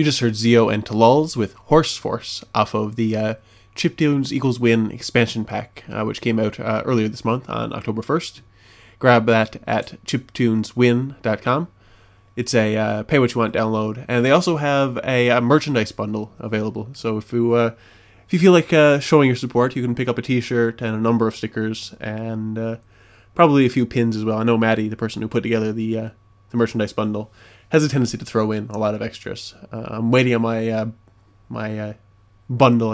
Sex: male